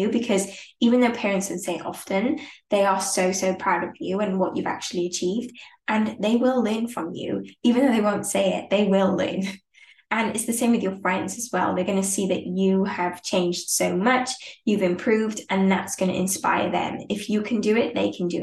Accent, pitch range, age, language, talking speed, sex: British, 185-220 Hz, 10-29, English, 225 wpm, female